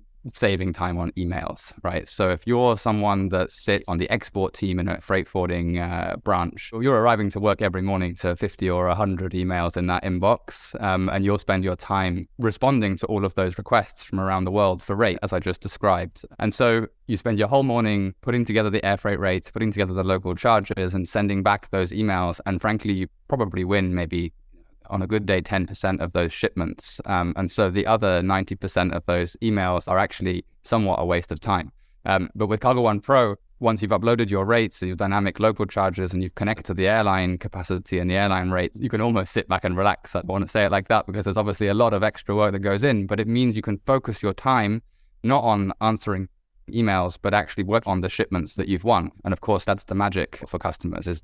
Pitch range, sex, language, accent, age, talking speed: 90-105 Hz, male, English, British, 20-39, 225 wpm